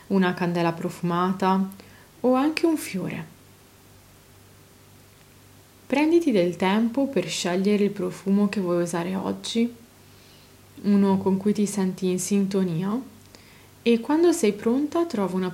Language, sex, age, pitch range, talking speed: Italian, female, 20-39, 175-225 Hz, 120 wpm